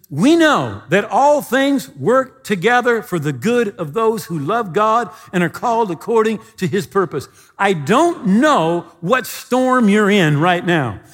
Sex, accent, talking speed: male, American, 165 wpm